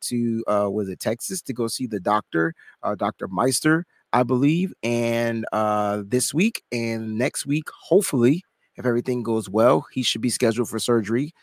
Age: 30-49